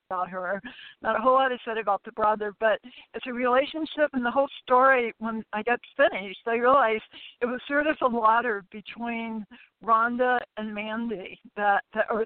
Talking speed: 180 wpm